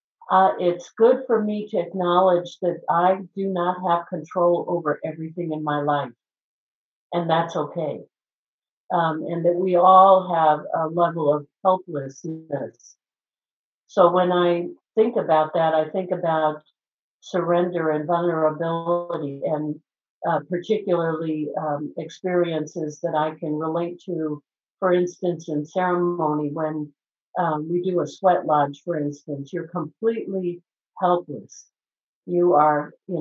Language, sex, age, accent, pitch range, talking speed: English, female, 50-69, American, 155-180 Hz, 130 wpm